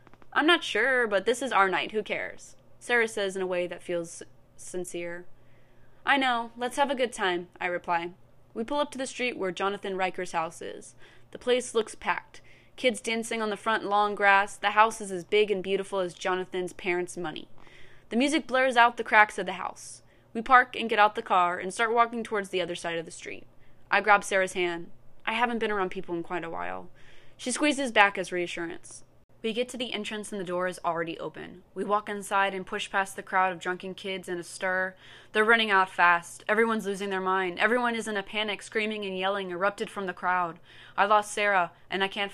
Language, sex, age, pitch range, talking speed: English, female, 20-39, 175-220 Hz, 220 wpm